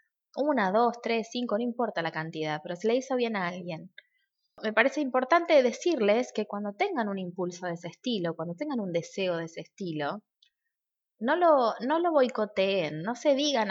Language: Spanish